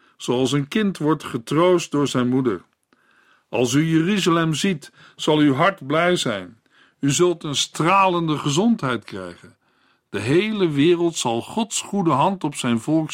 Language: Dutch